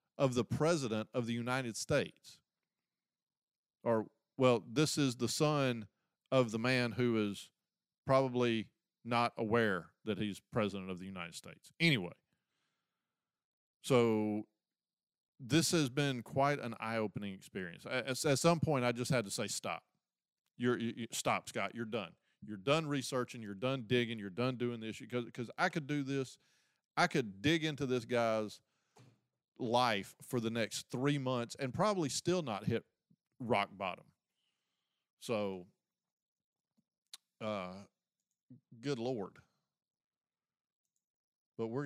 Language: English